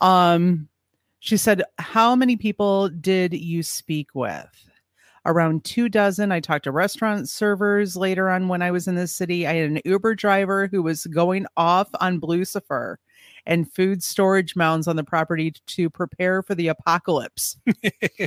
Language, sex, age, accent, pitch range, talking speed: English, female, 30-49, American, 155-185 Hz, 160 wpm